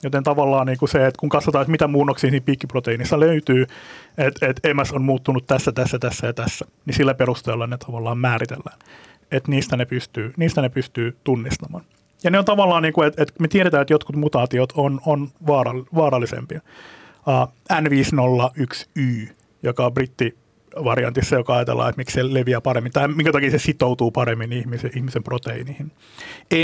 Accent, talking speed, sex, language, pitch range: native, 165 wpm, male, Finnish, 125-150 Hz